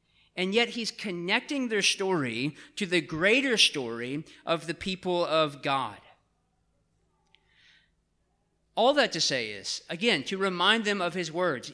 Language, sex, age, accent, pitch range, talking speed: English, male, 40-59, American, 150-195 Hz, 140 wpm